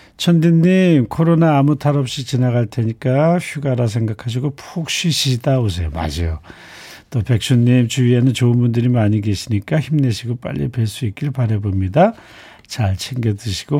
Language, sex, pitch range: Korean, male, 105-150 Hz